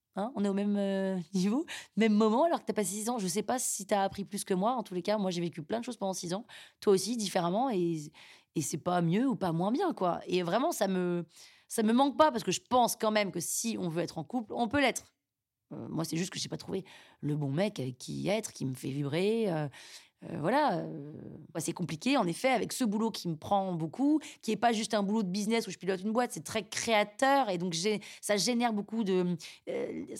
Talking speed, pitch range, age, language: 255 wpm, 185-245 Hz, 20-39, French